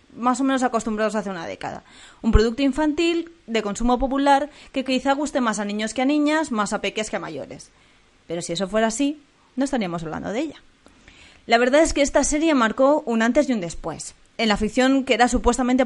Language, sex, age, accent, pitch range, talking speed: Spanish, female, 20-39, Spanish, 210-260 Hz, 210 wpm